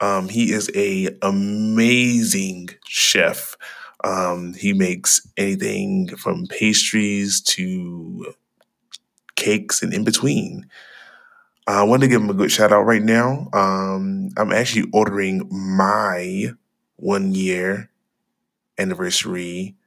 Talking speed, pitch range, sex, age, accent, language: 110 wpm, 95-125 Hz, male, 20-39, American, English